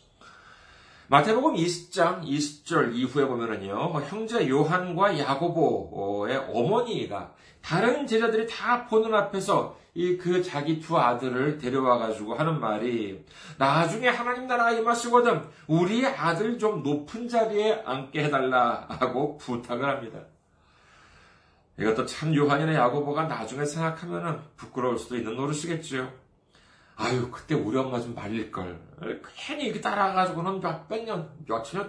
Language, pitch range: Korean, 125-200 Hz